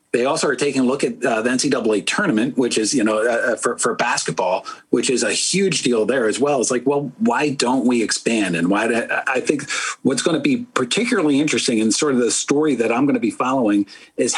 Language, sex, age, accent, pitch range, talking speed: English, male, 40-59, American, 110-145 Hz, 240 wpm